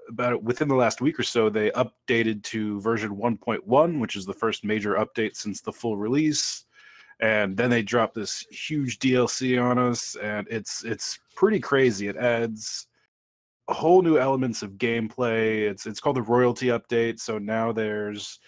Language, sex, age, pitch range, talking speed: English, male, 30-49, 110-130 Hz, 180 wpm